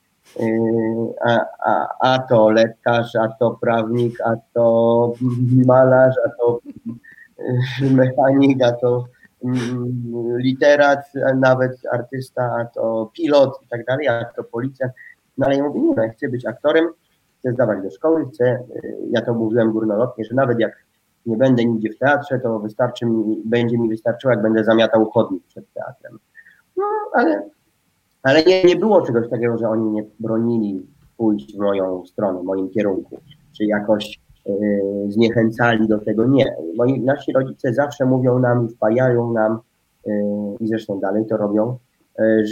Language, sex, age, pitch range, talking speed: Polish, male, 30-49, 110-130 Hz, 150 wpm